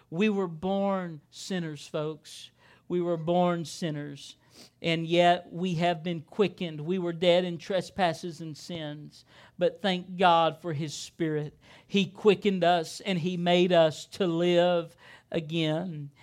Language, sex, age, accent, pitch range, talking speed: English, male, 50-69, American, 165-210 Hz, 140 wpm